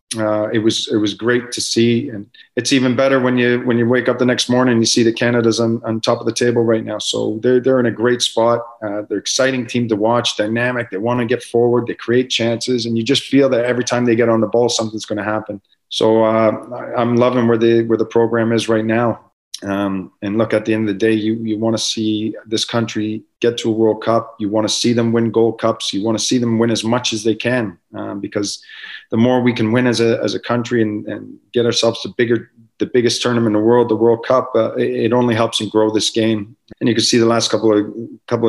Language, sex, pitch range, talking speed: English, male, 110-120 Hz, 260 wpm